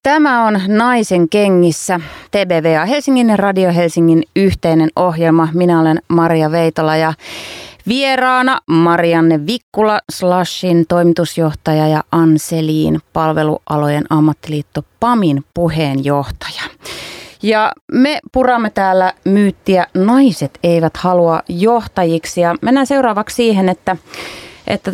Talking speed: 100 wpm